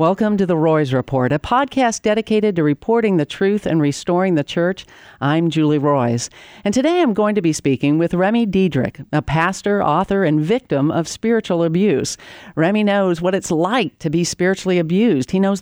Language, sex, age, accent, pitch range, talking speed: English, female, 50-69, American, 155-200 Hz, 185 wpm